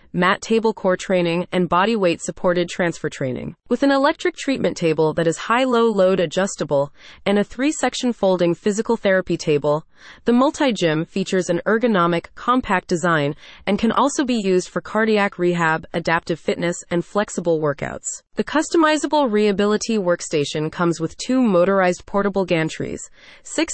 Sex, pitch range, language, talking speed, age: female, 170-230 Hz, English, 150 wpm, 30-49